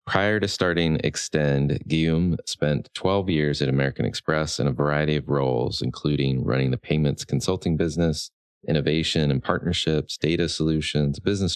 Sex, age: male, 30-49